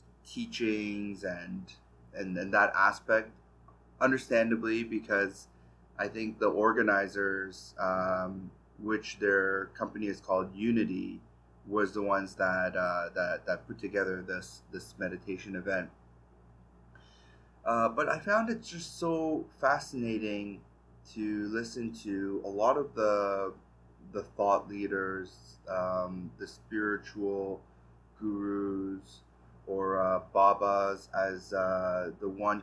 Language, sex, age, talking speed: English, male, 30-49, 110 wpm